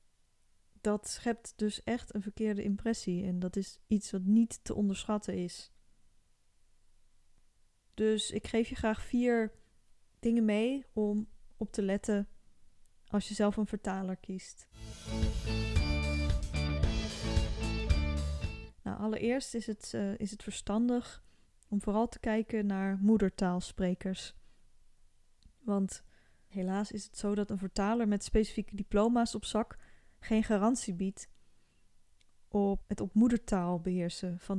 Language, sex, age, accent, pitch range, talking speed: Dutch, female, 10-29, Dutch, 180-215 Hz, 120 wpm